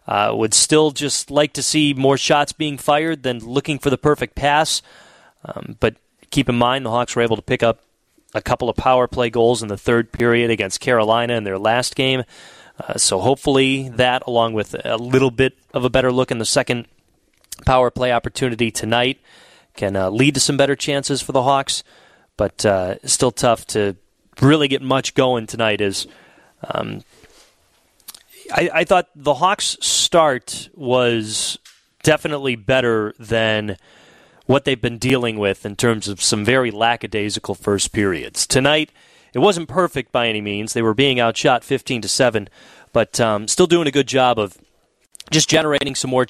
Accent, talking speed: American, 175 wpm